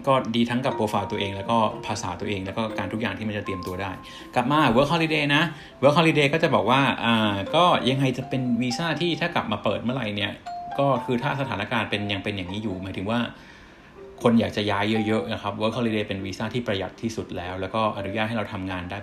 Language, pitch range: Thai, 100-125 Hz